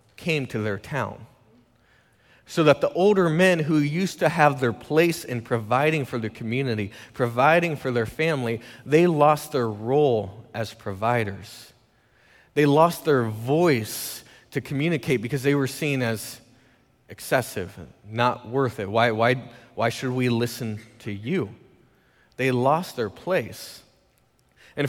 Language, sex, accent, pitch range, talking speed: English, male, American, 115-150 Hz, 140 wpm